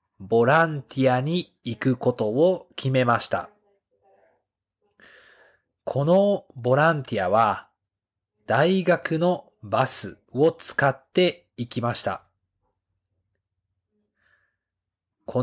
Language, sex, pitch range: Japanese, male, 110-165 Hz